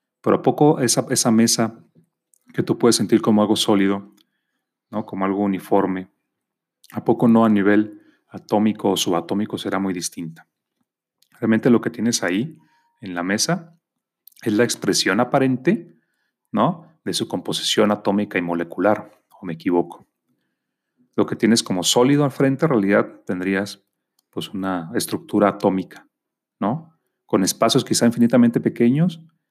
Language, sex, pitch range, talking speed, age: Spanish, male, 95-120 Hz, 135 wpm, 40-59